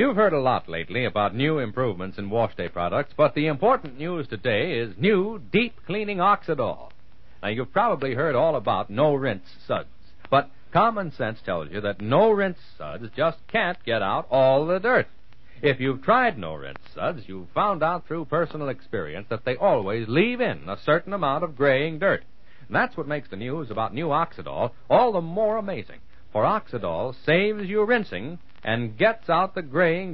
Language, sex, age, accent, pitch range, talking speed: English, male, 60-79, American, 115-180 Hz, 175 wpm